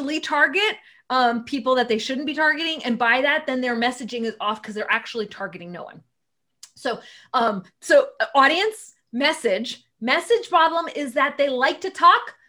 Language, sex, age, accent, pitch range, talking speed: English, female, 30-49, American, 230-295 Hz, 170 wpm